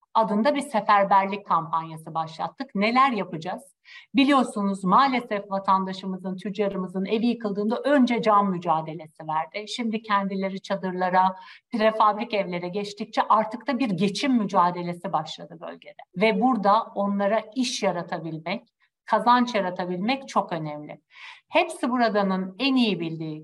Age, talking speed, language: 60-79, 115 wpm, Turkish